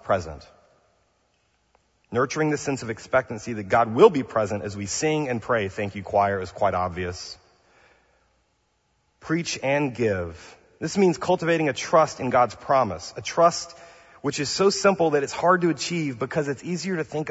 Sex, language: male, English